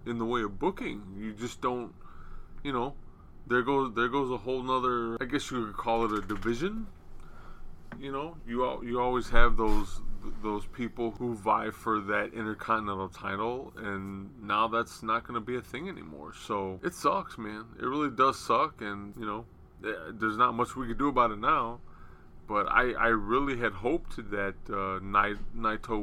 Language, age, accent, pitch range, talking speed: English, 20-39, American, 105-125 Hz, 185 wpm